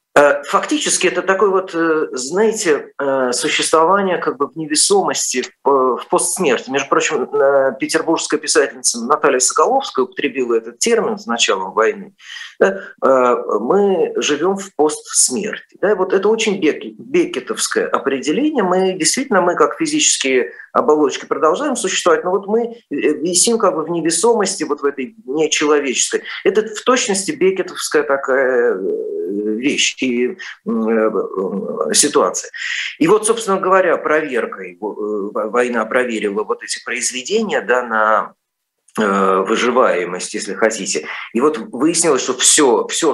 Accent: native